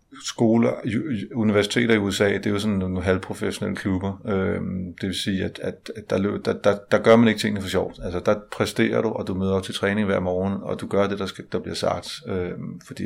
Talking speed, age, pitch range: 240 wpm, 30-49, 95-115 Hz